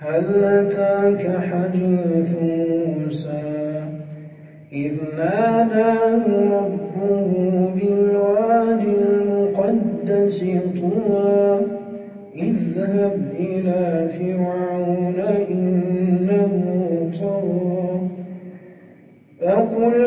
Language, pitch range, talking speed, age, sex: English, 185-230 Hz, 50 wpm, 40-59, male